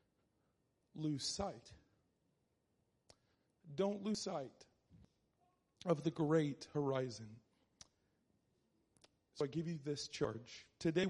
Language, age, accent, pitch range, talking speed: English, 40-59, American, 135-170 Hz, 85 wpm